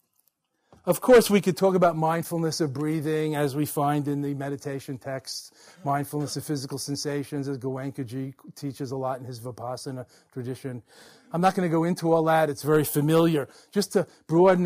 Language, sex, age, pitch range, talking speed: English, male, 40-59, 135-160 Hz, 175 wpm